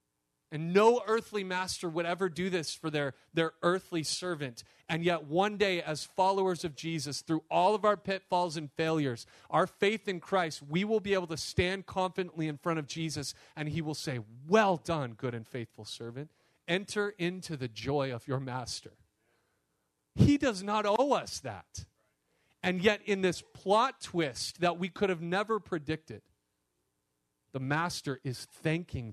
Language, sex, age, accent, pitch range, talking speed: English, male, 40-59, American, 105-170 Hz, 170 wpm